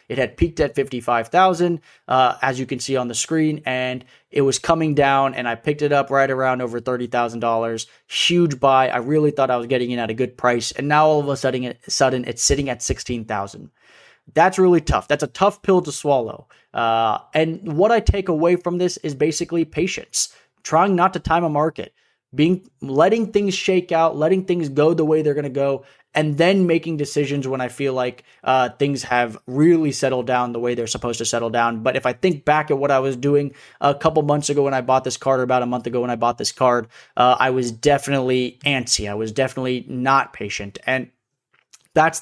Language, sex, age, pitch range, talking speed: English, male, 20-39, 125-150 Hz, 215 wpm